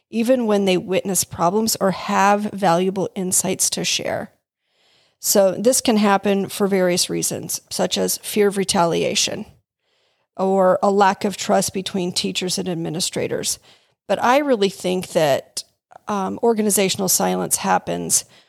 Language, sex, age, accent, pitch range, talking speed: English, female, 40-59, American, 185-215 Hz, 135 wpm